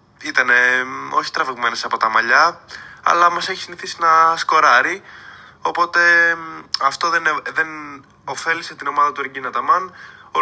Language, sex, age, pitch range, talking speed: Greek, male, 20-39, 145-175 Hz, 150 wpm